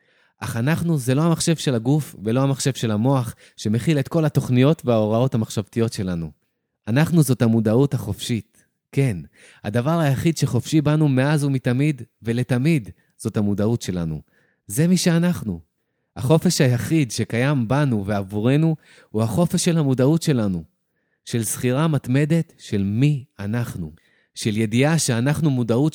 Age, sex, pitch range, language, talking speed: 30-49, male, 110-150 Hz, Hebrew, 130 wpm